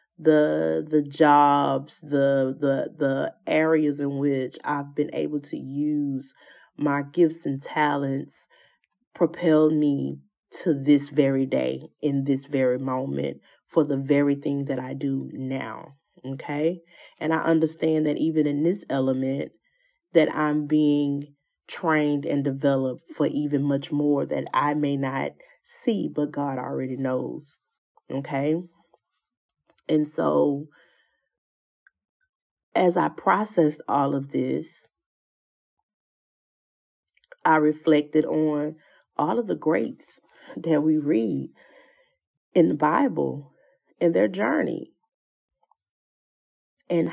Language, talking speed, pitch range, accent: English, 115 wpm, 140-165 Hz, American